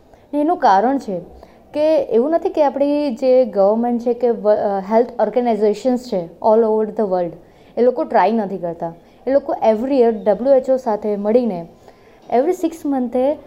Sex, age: female, 20-39